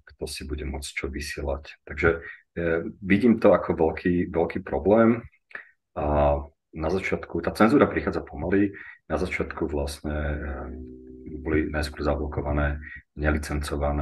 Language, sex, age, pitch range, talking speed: Slovak, male, 40-59, 70-80 Hz, 120 wpm